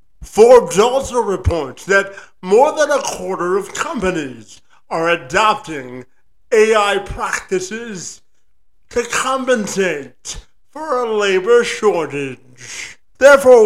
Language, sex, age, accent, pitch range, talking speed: English, male, 50-69, American, 160-240 Hz, 90 wpm